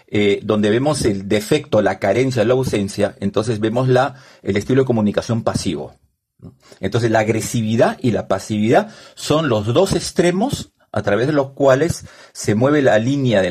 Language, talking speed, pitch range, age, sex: Spanish, 160 wpm, 105-130 Hz, 50-69, male